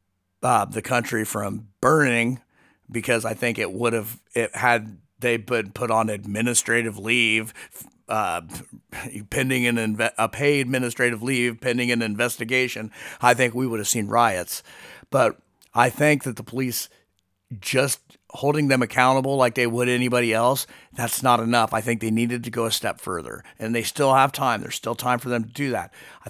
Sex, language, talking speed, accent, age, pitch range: male, English, 180 wpm, American, 40-59, 110-130 Hz